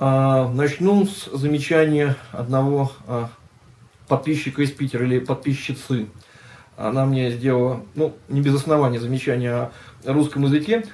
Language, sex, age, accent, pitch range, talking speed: Russian, male, 20-39, native, 125-155 Hz, 110 wpm